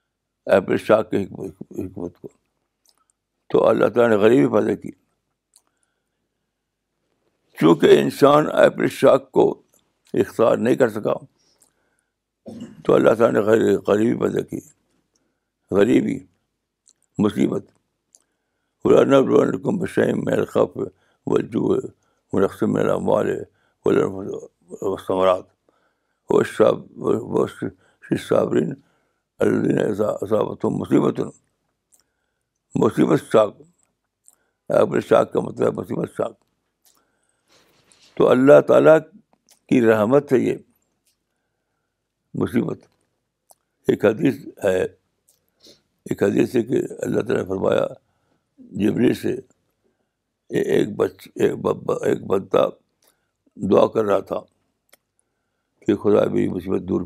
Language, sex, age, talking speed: Urdu, male, 60-79, 85 wpm